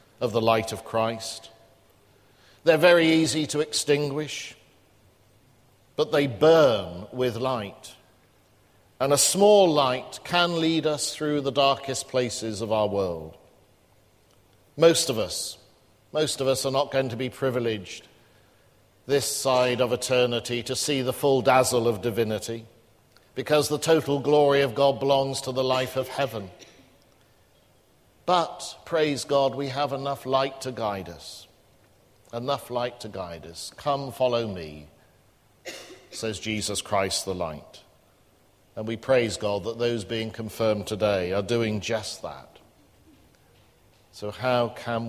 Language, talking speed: English, 135 wpm